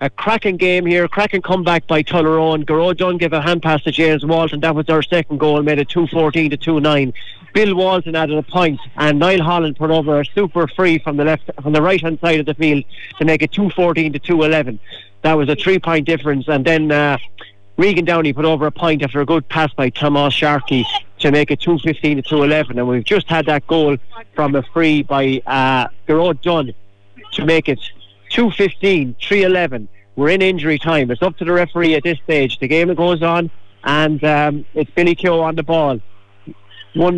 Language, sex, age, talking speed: English, male, 30-49, 205 wpm